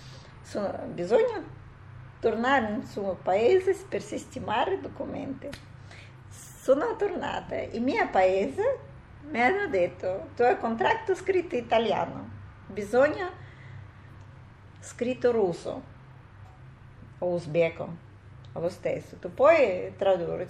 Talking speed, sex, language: 100 wpm, female, Italian